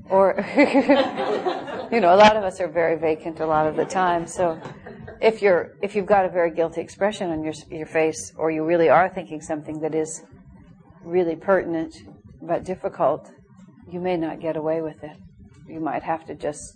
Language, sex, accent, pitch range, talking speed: English, female, American, 155-185 Hz, 190 wpm